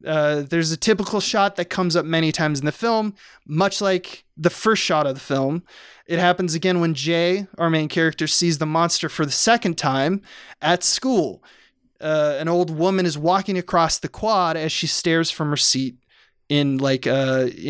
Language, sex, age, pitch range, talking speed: English, male, 20-39, 150-180 Hz, 190 wpm